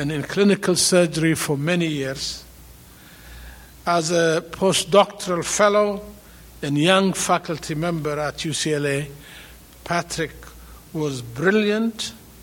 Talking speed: 95 wpm